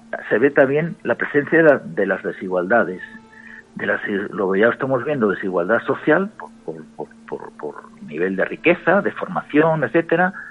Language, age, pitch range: Spanish, 50-69, 115-185 Hz